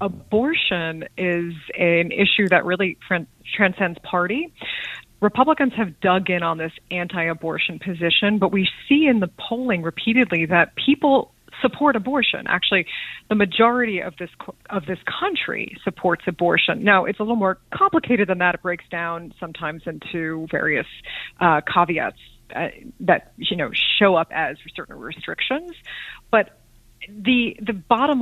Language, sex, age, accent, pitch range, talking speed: English, female, 30-49, American, 175-230 Hz, 140 wpm